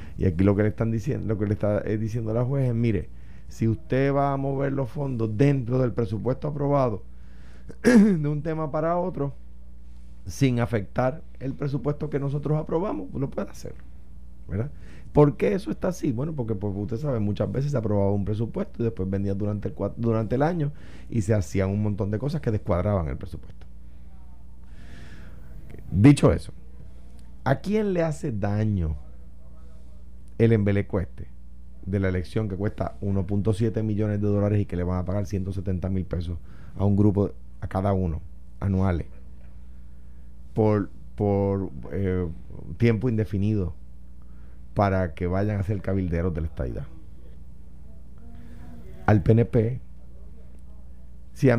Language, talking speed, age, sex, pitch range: Spanish, 150 wpm, 30-49, male, 75-115 Hz